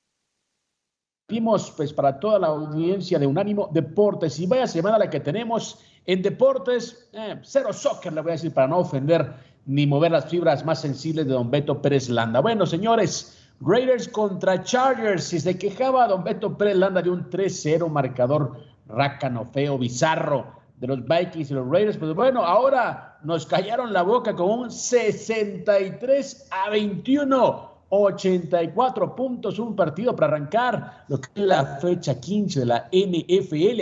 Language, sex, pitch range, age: Spanish, male, 145-210 Hz, 50-69